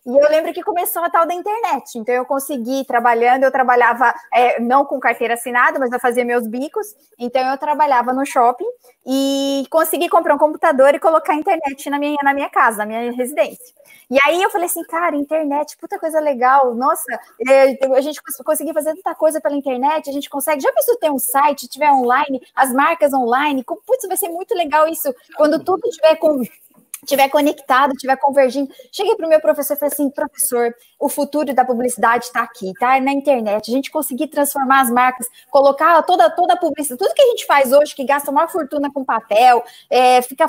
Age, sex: 20-39, female